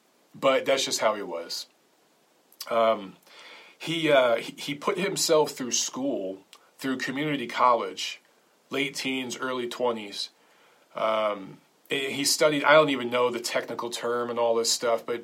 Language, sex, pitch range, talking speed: English, male, 115-140 Hz, 145 wpm